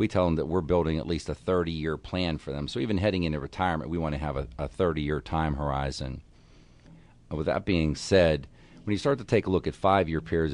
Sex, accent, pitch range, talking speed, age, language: male, American, 75-90 Hz, 235 wpm, 50-69, English